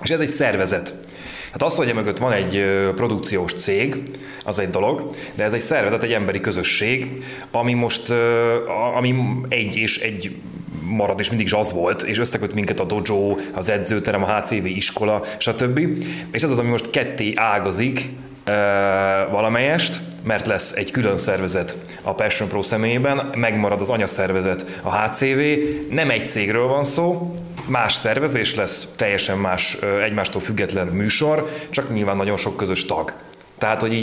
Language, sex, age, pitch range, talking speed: Hungarian, male, 30-49, 100-120 Hz, 155 wpm